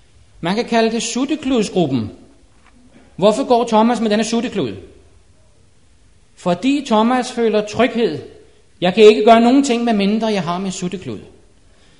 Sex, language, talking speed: male, Danish, 135 wpm